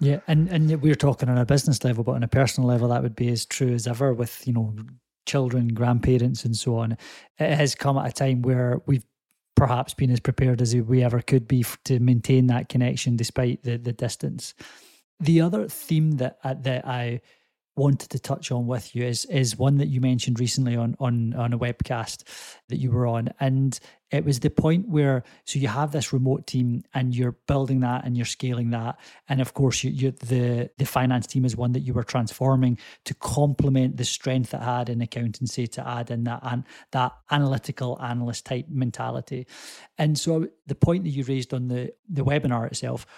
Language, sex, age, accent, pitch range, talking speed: English, male, 30-49, British, 120-140 Hz, 205 wpm